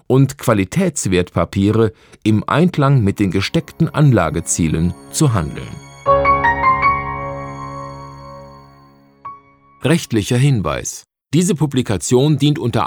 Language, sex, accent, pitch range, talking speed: German, male, German, 100-145 Hz, 75 wpm